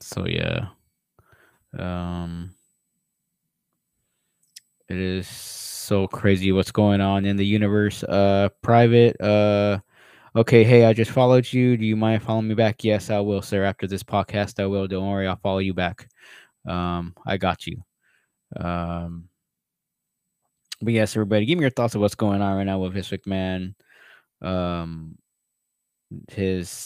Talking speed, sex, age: 145 wpm, male, 20-39